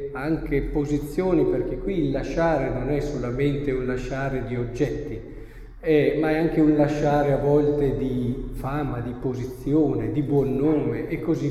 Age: 50-69